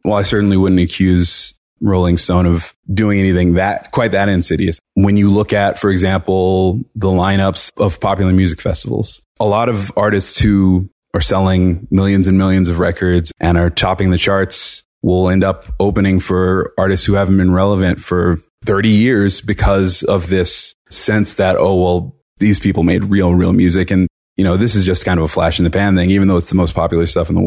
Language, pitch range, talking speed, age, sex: English, 85-100 Hz, 200 wpm, 30-49, male